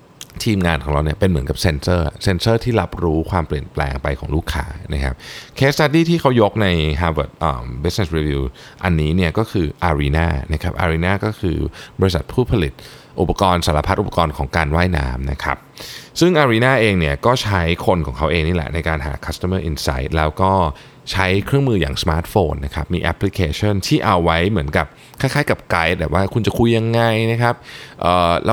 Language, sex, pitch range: Thai, male, 80-115 Hz